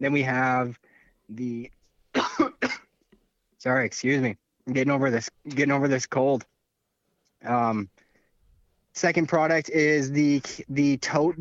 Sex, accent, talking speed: male, American, 115 wpm